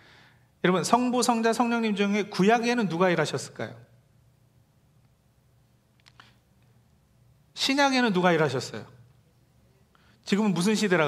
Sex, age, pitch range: male, 40-59, 130-200 Hz